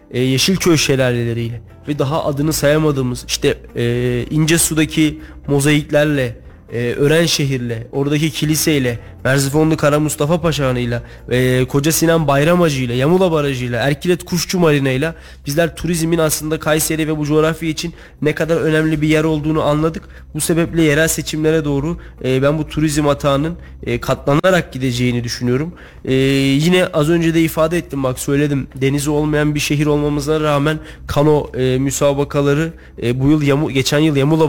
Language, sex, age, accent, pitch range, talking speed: Turkish, male, 30-49, native, 140-160 Hz, 145 wpm